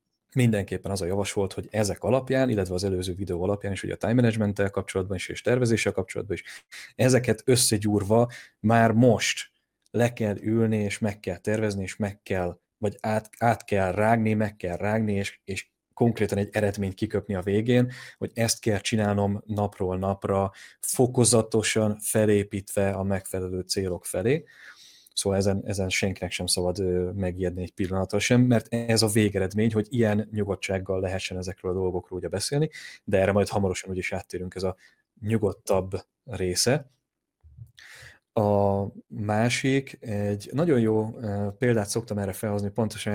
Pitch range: 95-115 Hz